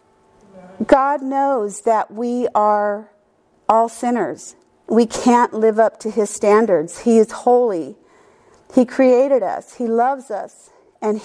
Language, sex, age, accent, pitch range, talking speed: English, female, 50-69, American, 220-270 Hz, 130 wpm